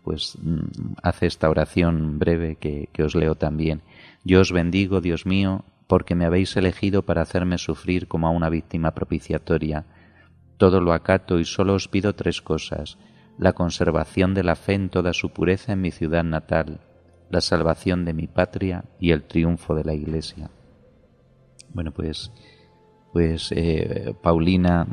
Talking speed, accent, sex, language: 155 wpm, Spanish, male, Spanish